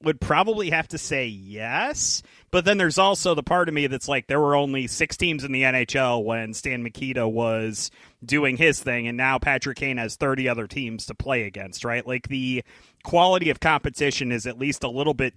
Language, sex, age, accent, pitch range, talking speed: English, male, 30-49, American, 125-155 Hz, 210 wpm